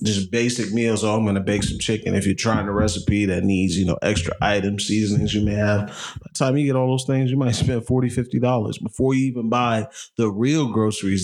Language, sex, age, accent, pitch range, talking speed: English, male, 20-39, American, 100-120 Hz, 240 wpm